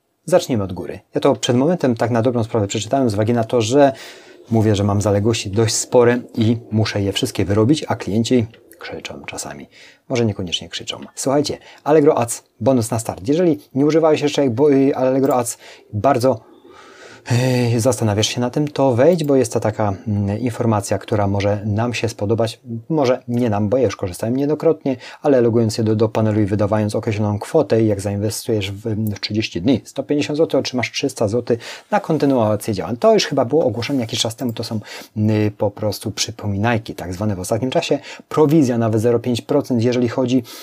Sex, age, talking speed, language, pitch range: male, 30-49, 180 wpm, Polish, 105-135 Hz